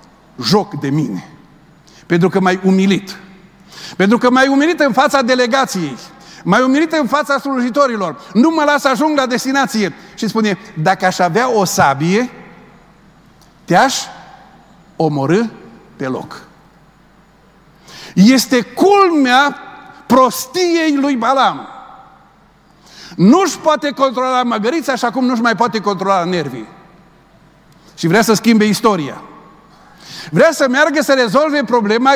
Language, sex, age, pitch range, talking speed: Romanian, male, 50-69, 180-265 Hz, 120 wpm